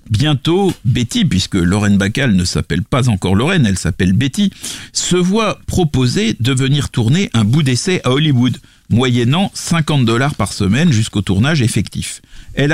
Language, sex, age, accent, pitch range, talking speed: French, male, 40-59, French, 105-160 Hz, 155 wpm